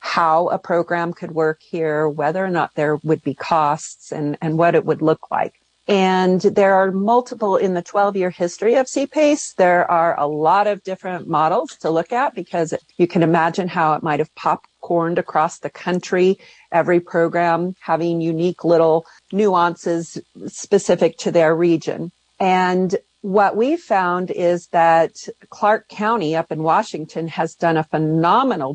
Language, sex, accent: English, female, American